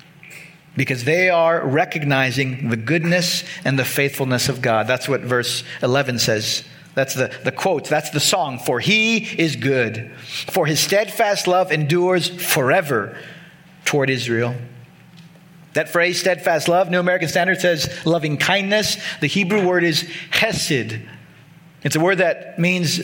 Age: 40-59